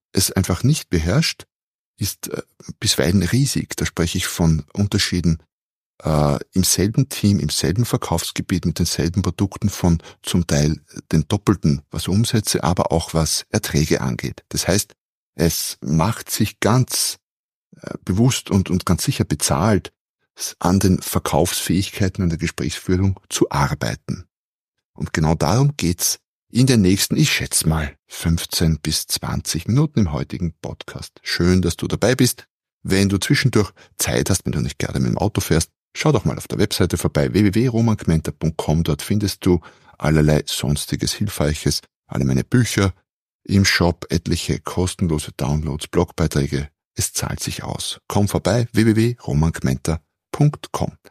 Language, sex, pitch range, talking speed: German, male, 80-105 Hz, 140 wpm